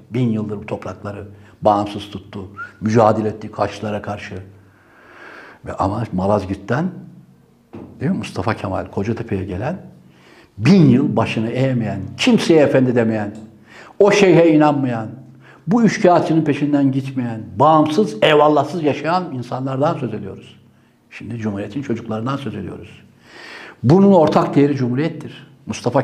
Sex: male